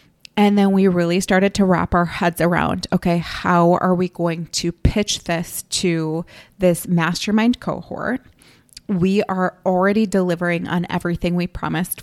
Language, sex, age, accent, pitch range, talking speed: English, female, 20-39, American, 175-200 Hz, 150 wpm